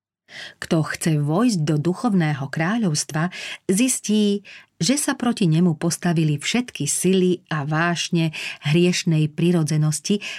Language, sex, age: Slovak, female, 40-59